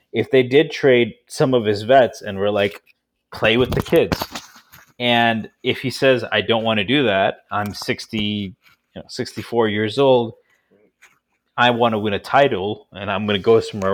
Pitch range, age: 105-135 Hz, 30-49